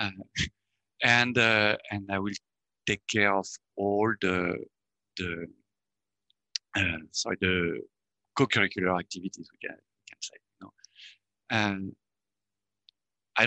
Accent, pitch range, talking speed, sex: French, 100-120 Hz, 105 wpm, male